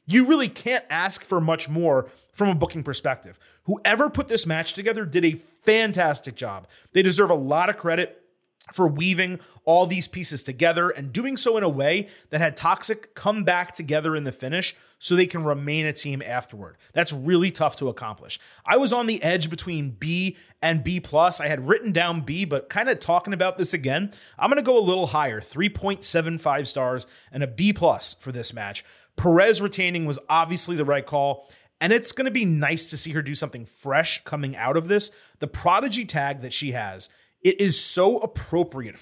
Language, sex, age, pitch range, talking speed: English, male, 30-49, 145-190 Hz, 195 wpm